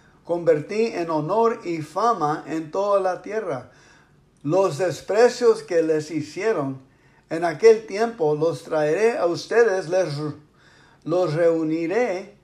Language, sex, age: English, male, 50-69